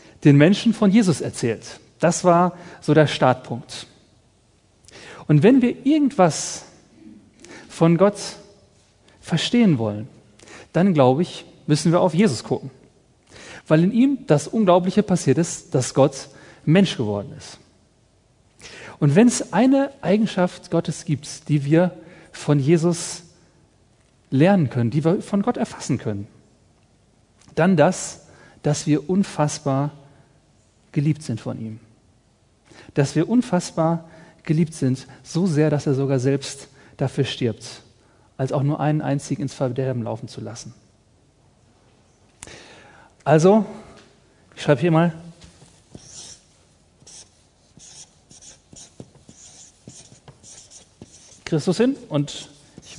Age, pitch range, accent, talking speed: 40-59, 130-175 Hz, German, 110 wpm